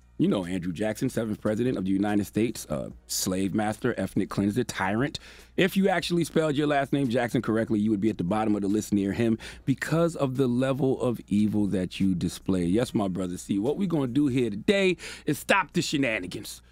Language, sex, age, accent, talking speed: English, male, 30-49, American, 215 wpm